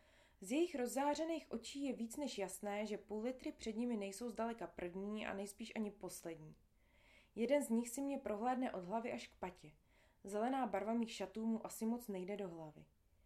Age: 20-39